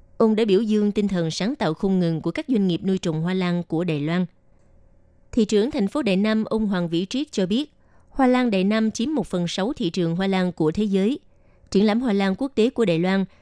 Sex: female